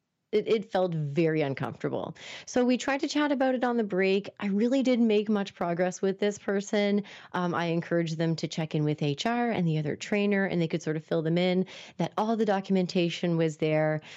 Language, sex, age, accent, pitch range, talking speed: English, female, 30-49, American, 160-205 Hz, 215 wpm